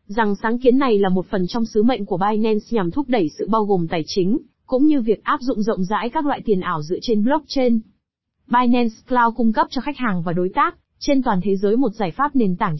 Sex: female